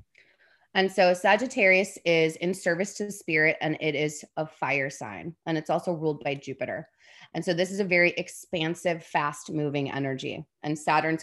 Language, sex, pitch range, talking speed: English, female, 150-180 Hz, 175 wpm